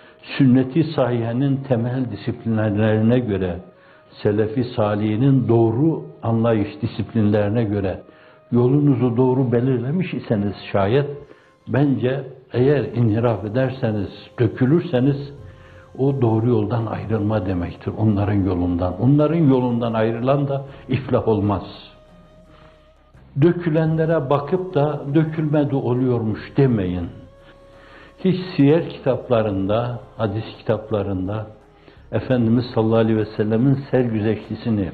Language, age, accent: Turkish, 60-79, native